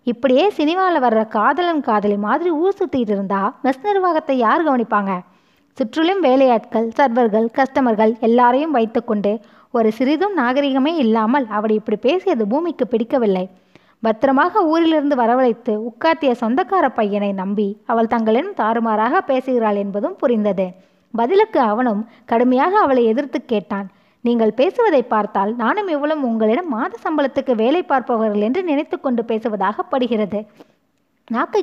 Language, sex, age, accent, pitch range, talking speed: Tamil, female, 20-39, native, 215-290 Hz, 120 wpm